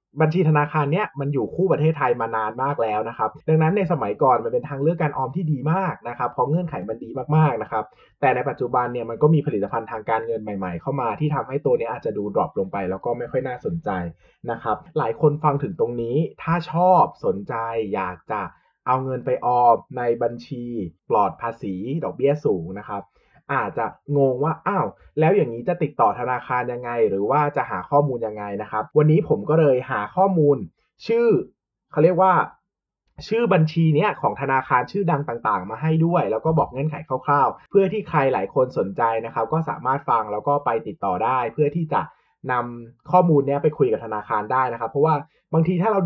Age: 20-39